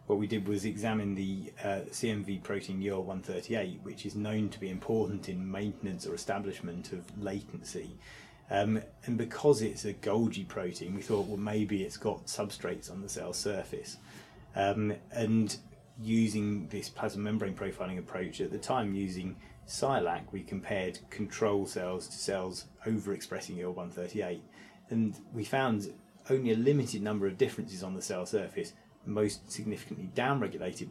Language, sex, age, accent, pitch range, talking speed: English, male, 30-49, British, 95-110 Hz, 150 wpm